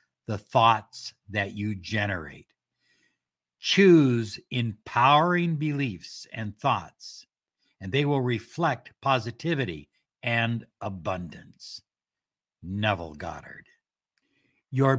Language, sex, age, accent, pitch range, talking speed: English, male, 60-79, American, 110-145 Hz, 80 wpm